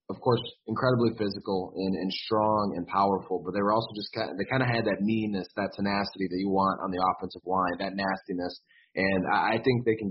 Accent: American